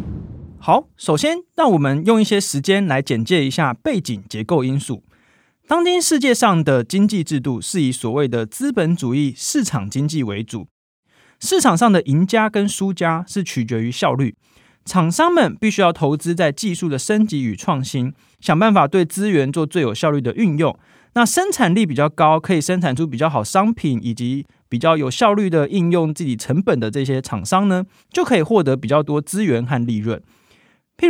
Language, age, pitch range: Chinese, 20-39, 130-205 Hz